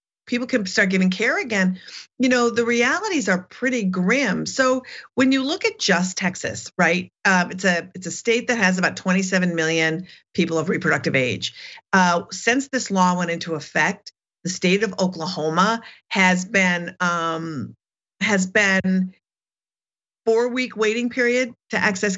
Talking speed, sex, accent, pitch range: 155 wpm, female, American, 180-225 Hz